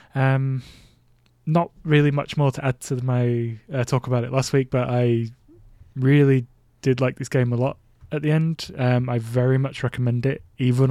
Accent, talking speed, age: British, 185 wpm, 20-39